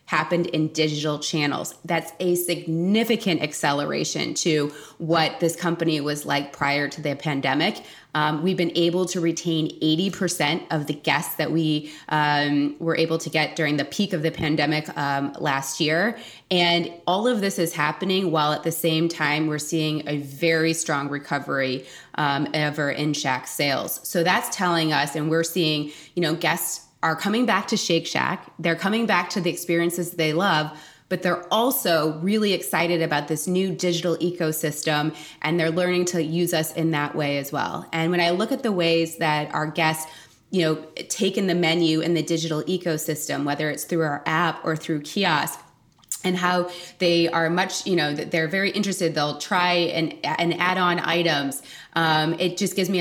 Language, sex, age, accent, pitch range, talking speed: English, female, 20-39, American, 155-175 Hz, 180 wpm